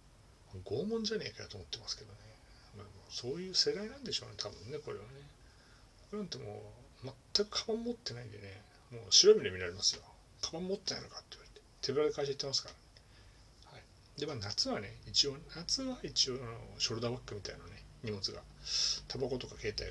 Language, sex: Japanese, male